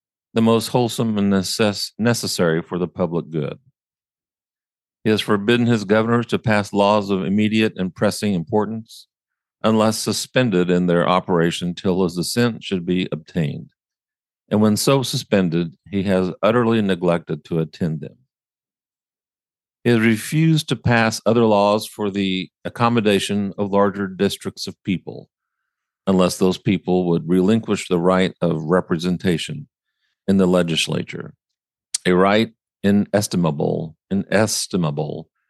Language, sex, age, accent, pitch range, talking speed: English, male, 50-69, American, 90-115 Hz, 125 wpm